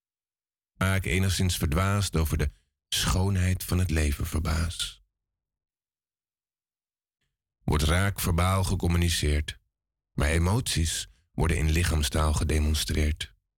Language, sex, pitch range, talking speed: Dutch, male, 80-100 Hz, 90 wpm